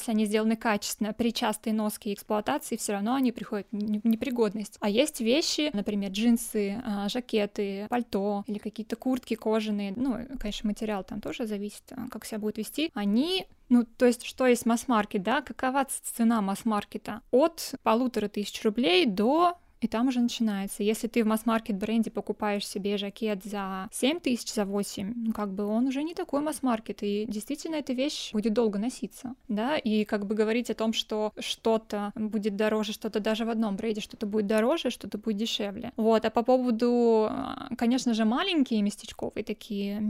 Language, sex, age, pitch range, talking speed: Russian, female, 20-39, 210-245 Hz, 170 wpm